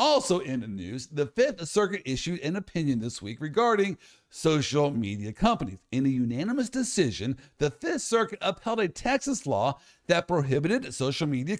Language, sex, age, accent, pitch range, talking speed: English, male, 50-69, American, 130-205 Hz, 160 wpm